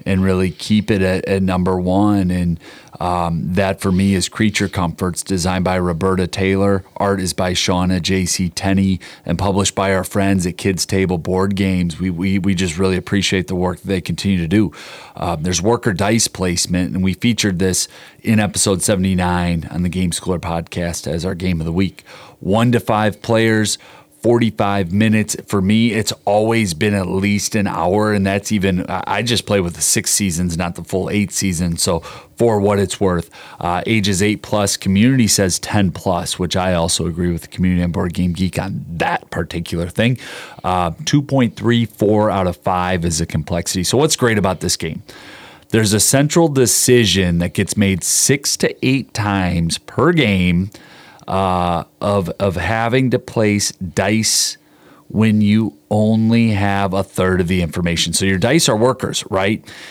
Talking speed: 180 wpm